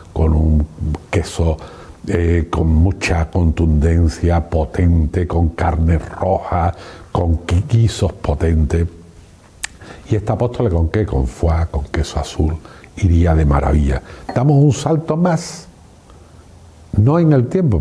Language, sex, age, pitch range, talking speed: Spanish, male, 70-89, 85-115 Hz, 120 wpm